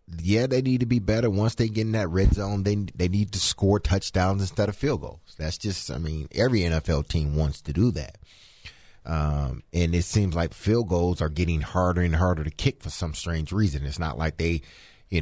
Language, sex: English, male